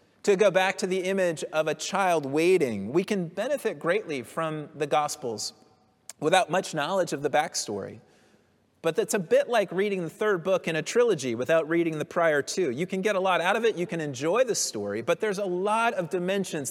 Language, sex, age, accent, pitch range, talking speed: English, male, 30-49, American, 155-205 Hz, 210 wpm